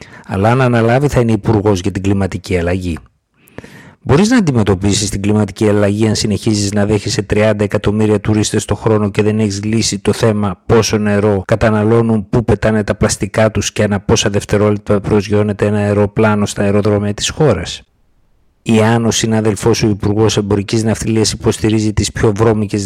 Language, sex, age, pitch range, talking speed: Greek, male, 50-69, 100-115 Hz, 165 wpm